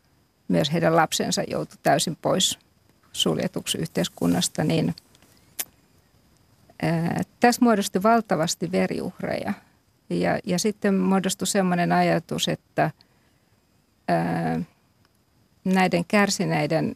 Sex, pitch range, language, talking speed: female, 165-195 Hz, Finnish, 85 wpm